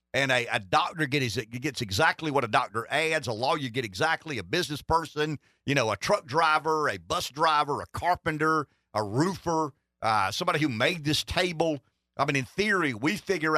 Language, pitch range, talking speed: English, 115-160 Hz, 185 wpm